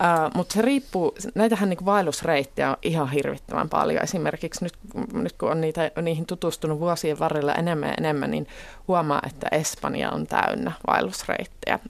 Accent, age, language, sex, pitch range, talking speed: native, 20-39, Finnish, female, 150-195 Hz, 145 wpm